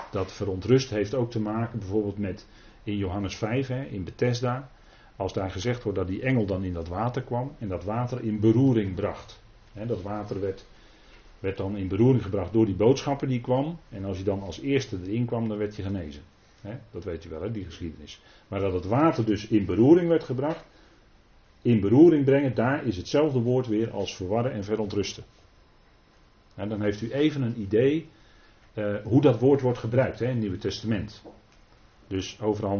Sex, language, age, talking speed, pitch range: male, Dutch, 40-59, 190 wpm, 100-125 Hz